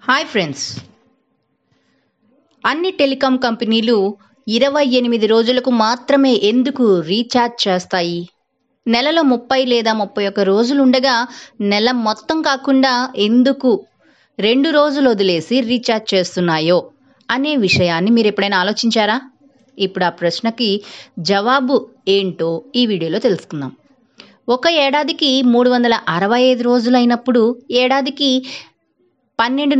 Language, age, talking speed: Telugu, 20-39, 95 wpm